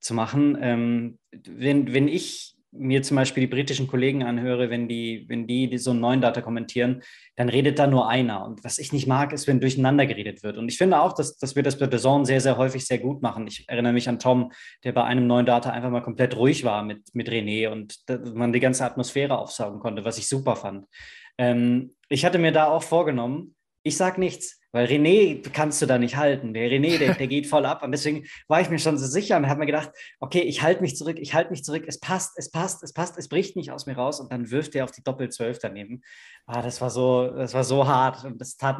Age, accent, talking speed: 20-39, German, 245 wpm